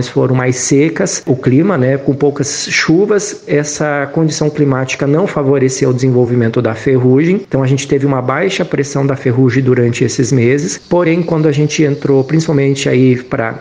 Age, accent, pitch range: 40-59, Brazilian, 125-150 Hz